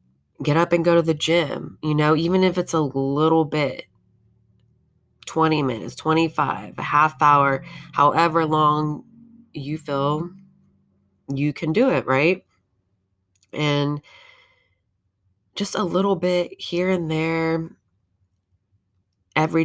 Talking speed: 120 wpm